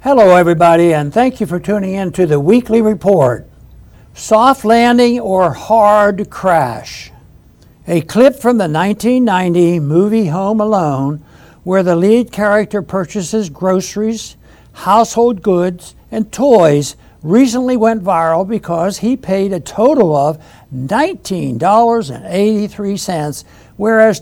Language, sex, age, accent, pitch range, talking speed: English, male, 60-79, American, 170-225 Hz, 115 wpm